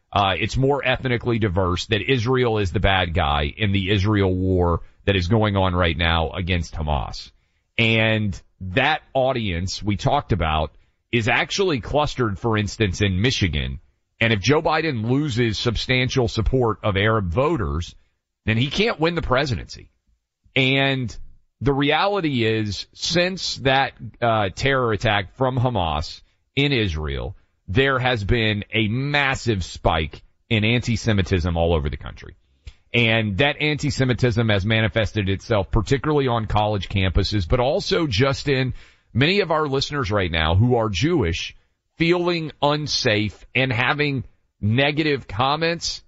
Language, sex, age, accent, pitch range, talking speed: English, male, 40-59, American, 95-130 Hz, 140 wpm